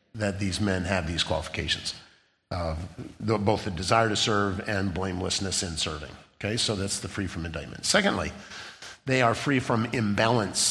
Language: English